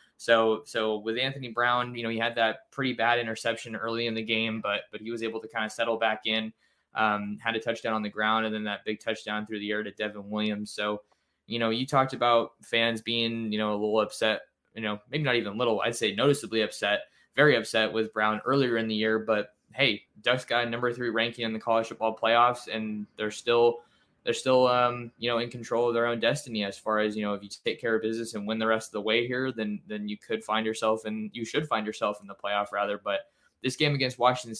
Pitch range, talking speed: 110-115 Hz, 245 wpm